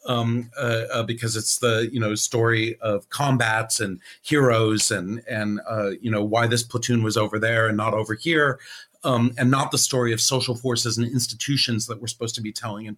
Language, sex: English, male